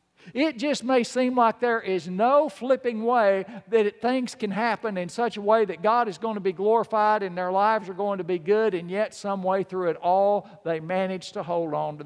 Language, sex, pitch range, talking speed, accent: English, male, 180-225 Hz, 230 wpm, American